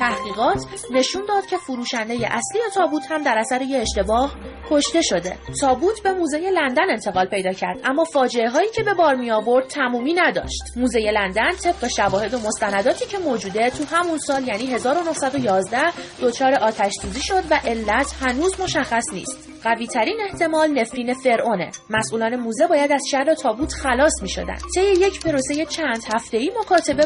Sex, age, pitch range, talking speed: female, 30-49, 230-315 Hz, 160 wpm